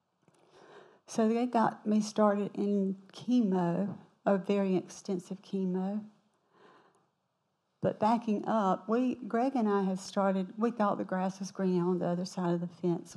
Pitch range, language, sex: 195-245 Hz, English, female